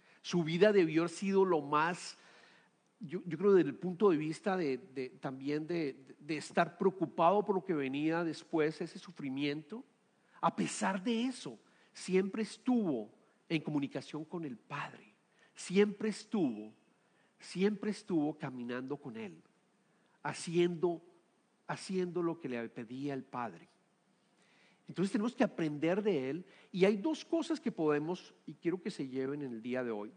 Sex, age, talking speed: male, 50-69, 155 wpm